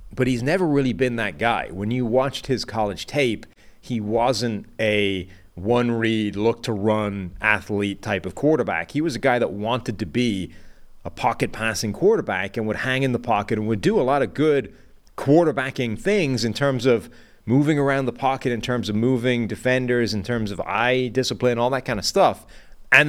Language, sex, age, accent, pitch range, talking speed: English, male, 30-49, American, 100-125 Hz, 195 wpm